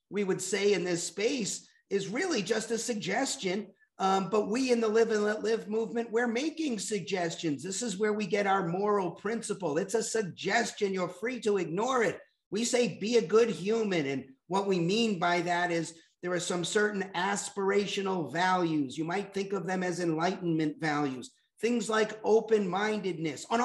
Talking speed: 180 wpm